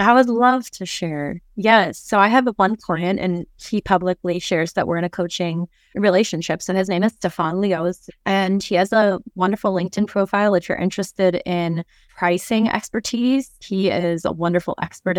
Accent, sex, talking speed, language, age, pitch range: American, female, 180 wpm, English, 20-39, 170-195 Hz